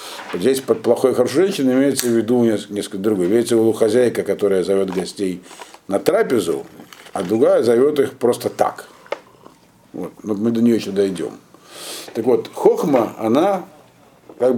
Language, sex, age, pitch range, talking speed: Russian, male, 50-69, 105-150 Hz, 155 wpm